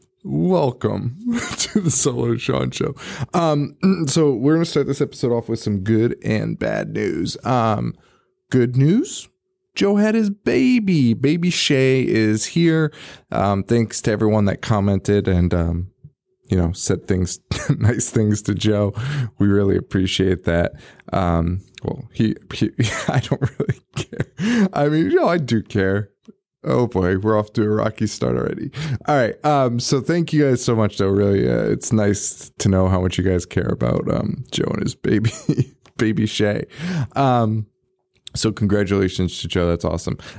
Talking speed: 165 wpm